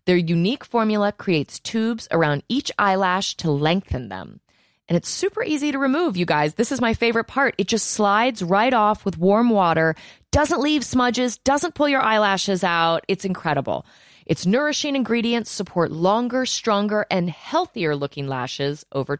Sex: female